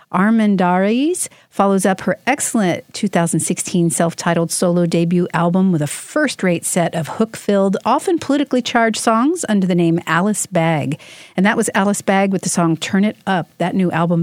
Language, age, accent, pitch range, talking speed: English, 50-69, American, 165-225 Hz, 175 wpm